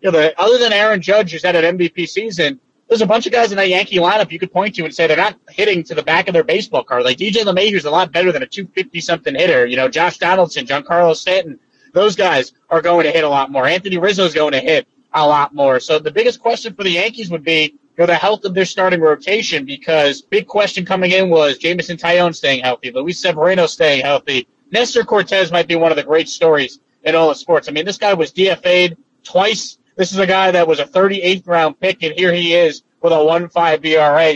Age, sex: 30-49, male